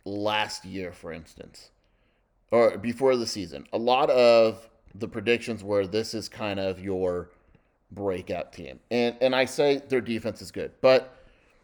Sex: male